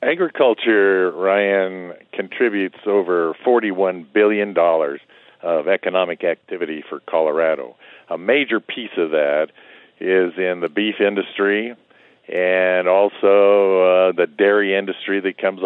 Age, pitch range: 50-69, 90-105 Hz